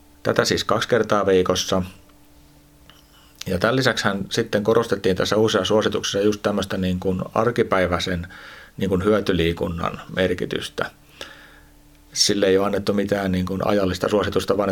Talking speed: 130 wpm